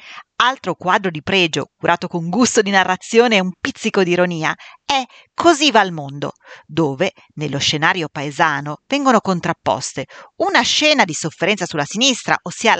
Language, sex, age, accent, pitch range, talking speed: Italian, female, 40-59, native, 175-255 Hz, 150 wpm